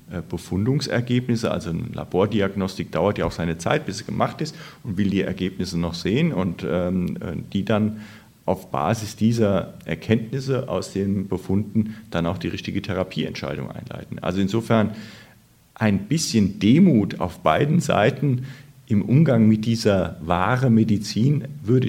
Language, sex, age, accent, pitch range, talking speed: German, male, 40-59, German, 95-120 Hz, 140 wpm